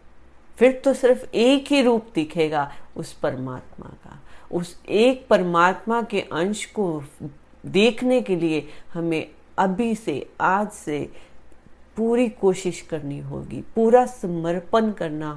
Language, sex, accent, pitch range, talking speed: Hindi, female, native, 150-185 Hz, 120 wpm